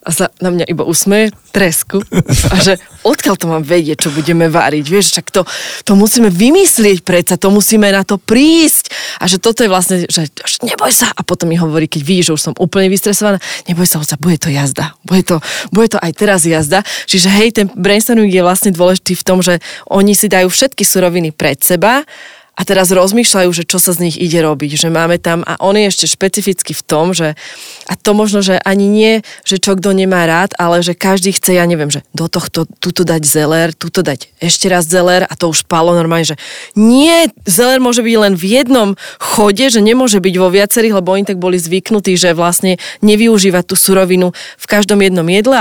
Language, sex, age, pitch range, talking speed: Slovak, female, 20-39, 170-205 Hz, 210 wpm